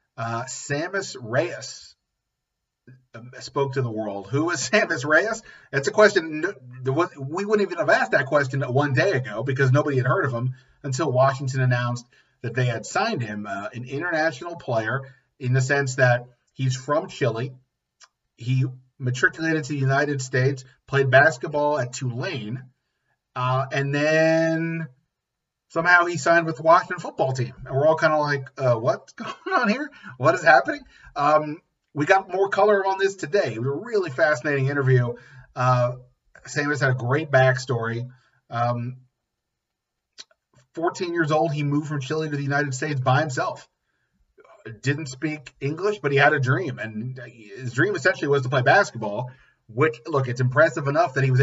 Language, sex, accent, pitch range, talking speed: English, male, American, 125-155 Hz, 165 wpm